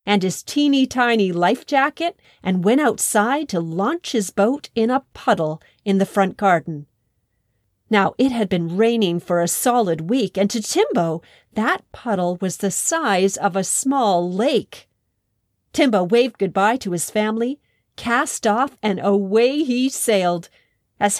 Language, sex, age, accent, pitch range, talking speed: English, female, 40-59, American, 180-245 Hz, 150 wpm